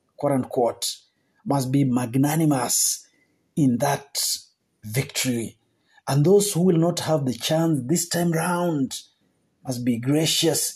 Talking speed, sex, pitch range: 130 wpm, male, 135-175 Hz